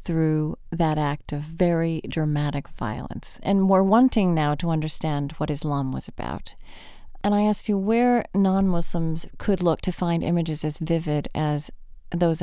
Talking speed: 155 wpm